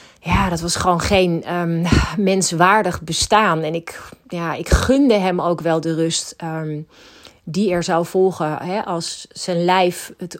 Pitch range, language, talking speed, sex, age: 165-200 Hz, Dutch, 160 wpm, female, 30-49